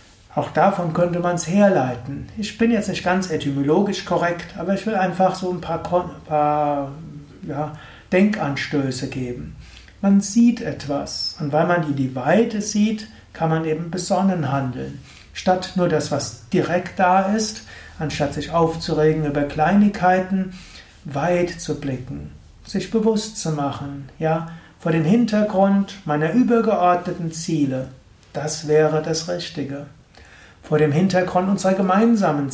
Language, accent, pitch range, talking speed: German, German, 145-190 Hz, 140 wpm